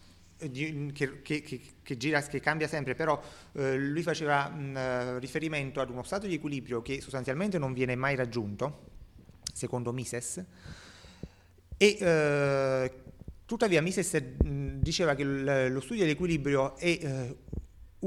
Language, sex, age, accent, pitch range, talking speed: Italian, male, 30-49, native, 125-155 Hz, 110 wpm